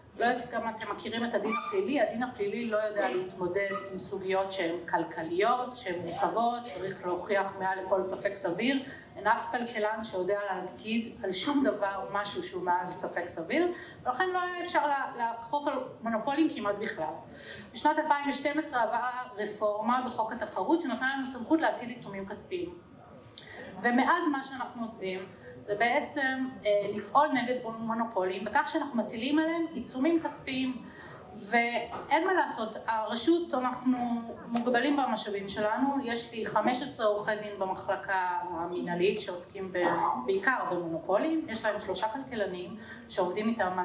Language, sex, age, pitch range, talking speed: Hebrew, female, 30-49, 195-270 Hz, 135 wpm